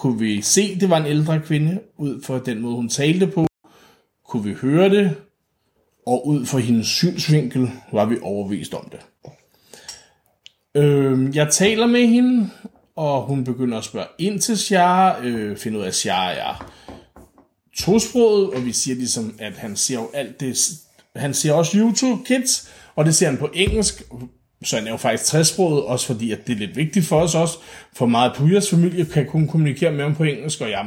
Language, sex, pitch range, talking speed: Danish, male, 125-175 Hz, 200 wpm